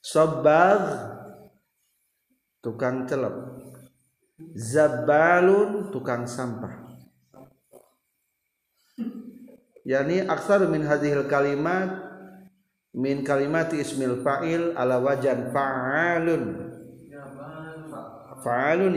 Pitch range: 120-160 Hz